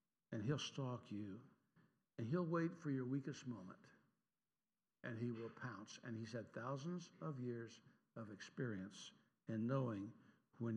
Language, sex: English, male